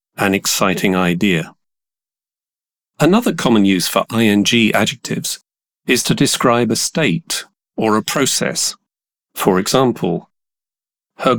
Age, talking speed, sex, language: 40-59, 105 wpm, male, English